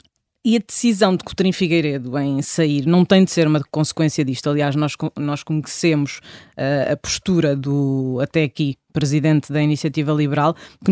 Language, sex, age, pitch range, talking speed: Portuguese, female, 20-39, 145-185 Hz, 165 wpm